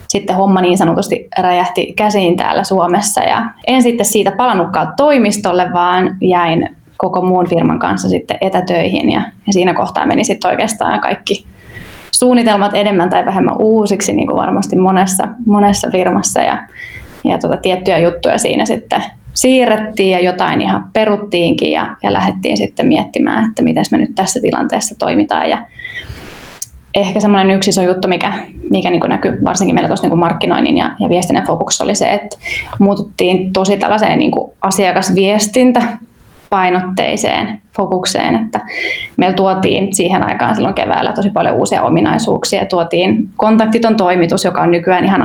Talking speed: 145 wpm